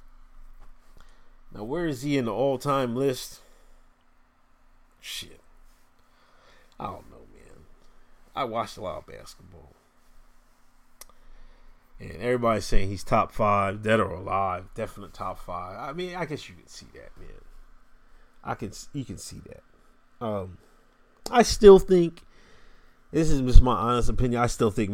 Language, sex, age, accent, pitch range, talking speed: English, male, 30-49, American, 95-115 Hz, 140 wpm